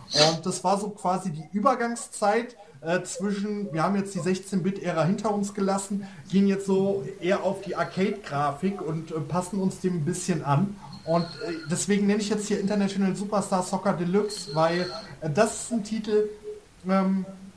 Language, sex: German, male